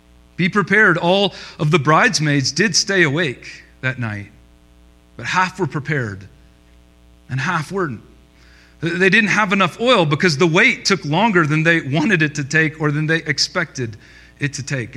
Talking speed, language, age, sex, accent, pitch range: 165 wpm, English, 40-59, male, American, 125-185 Hz